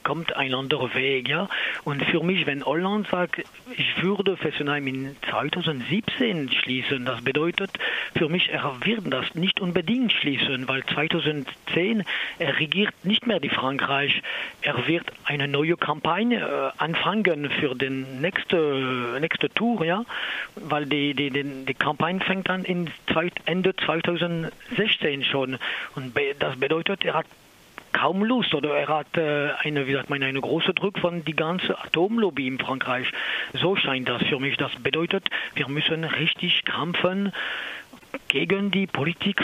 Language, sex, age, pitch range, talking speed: German, male, 40-59, 145-190 Hz, 145 wpm